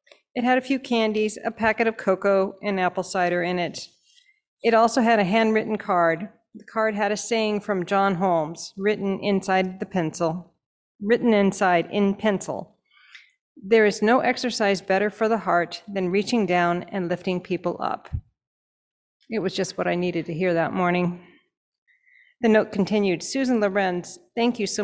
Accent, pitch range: American, 180-225 Hz